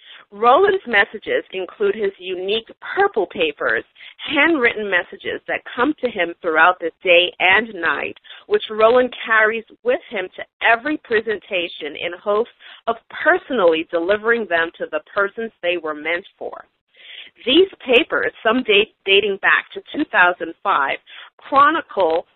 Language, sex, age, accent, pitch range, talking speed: English, female, 40-59, American, 185-285 Hz, 130 wpm